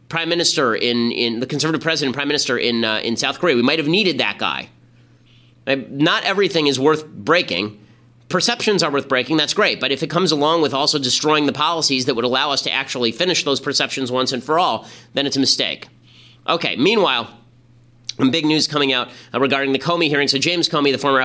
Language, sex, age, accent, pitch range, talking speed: English, male, 30-49, American, 120-150 Hz, 220 wpm